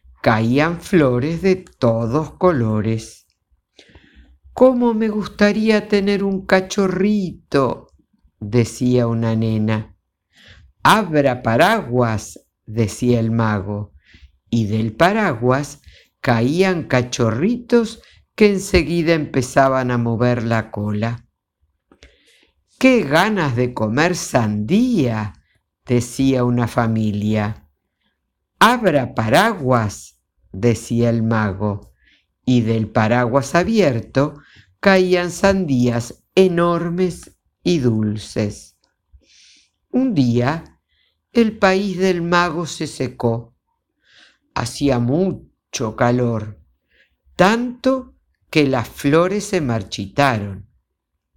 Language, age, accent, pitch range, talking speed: Spanish, 50-69, Argentinian, 110-175 Hz, 80 wpm